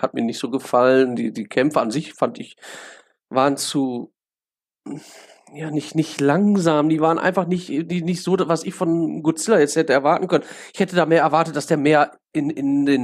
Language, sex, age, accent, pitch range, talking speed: German, male, 40-59, German, 135-180 Hz, 200 wpm